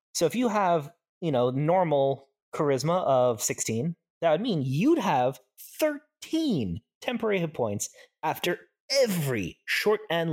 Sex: male